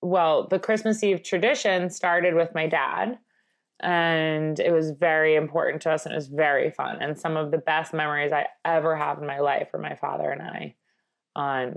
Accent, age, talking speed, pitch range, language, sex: American, 20-39, 200 wpm, 150-190 Hz, English, female